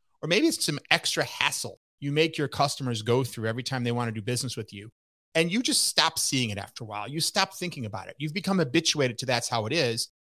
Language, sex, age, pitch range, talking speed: English, male, 30-49, 115-160 Hz, 250 wpm